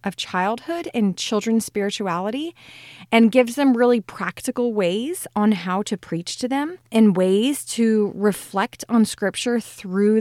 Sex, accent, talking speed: female, American, 140 wpm